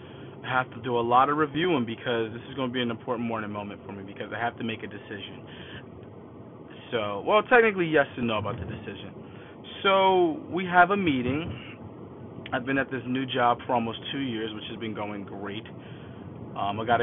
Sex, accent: male, American